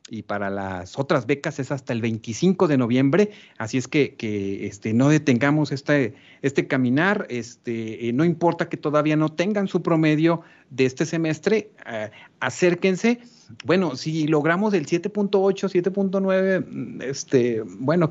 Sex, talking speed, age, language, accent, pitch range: male, 145 wpm, 40-59, Spanish, Mexican, 120-165 Hz